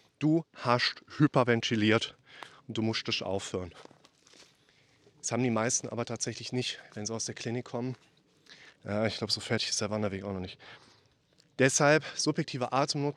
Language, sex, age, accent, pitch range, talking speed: German, male, 30-49, German, 110-145 Hz, 155 wpm